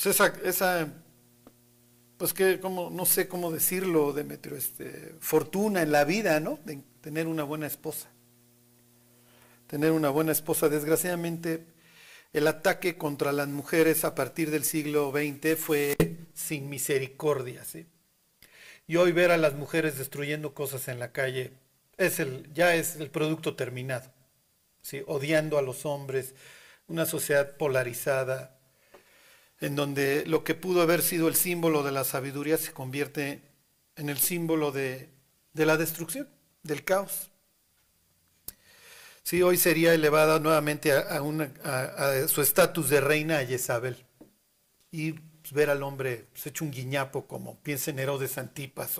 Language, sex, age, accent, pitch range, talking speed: Spanish, male, 50-69, Mexican, 140-165 Hz, 145 wpm